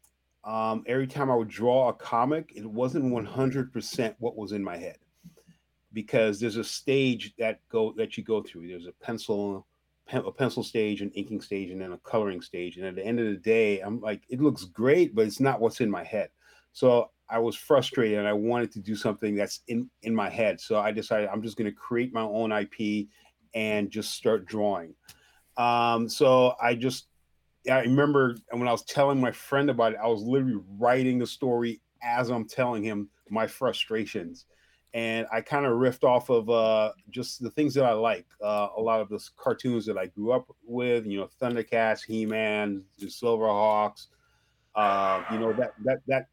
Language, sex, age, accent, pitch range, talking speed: English, male, 40-59, American, 105-125 Hz, 195 wpm